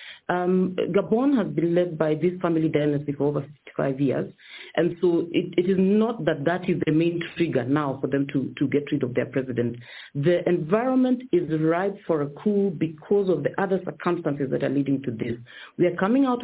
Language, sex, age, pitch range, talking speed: English, female, 40-59, 145-190 Hz, 205 wpm